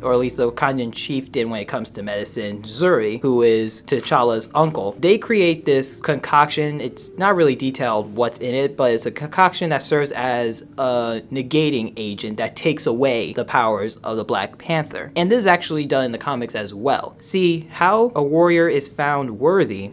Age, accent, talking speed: 20-39, American, 190 wpm